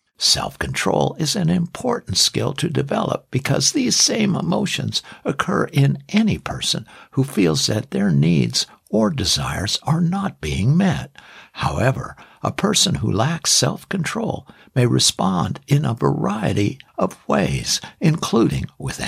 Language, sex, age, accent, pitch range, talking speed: English, male, 60-79, American, 135-185 Hz, 135 wpm